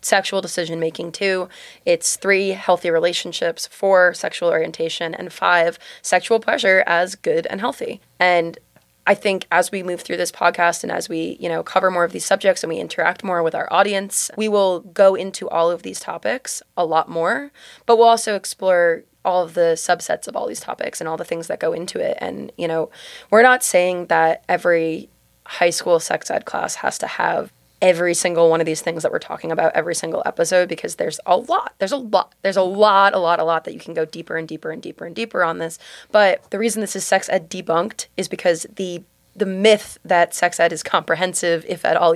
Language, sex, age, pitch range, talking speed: English, female, 20-39, 170-200 Hz, 215 wpm